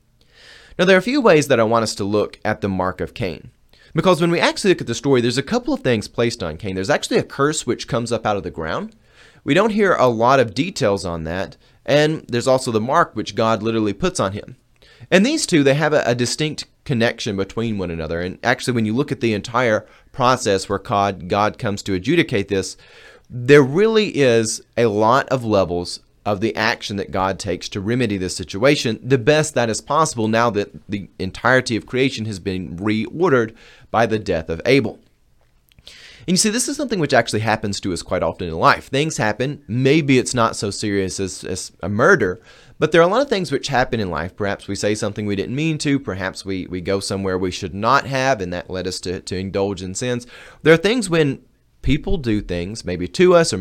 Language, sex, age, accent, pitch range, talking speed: English, male, 30-49, American, 100-140 Hz, 225 wpm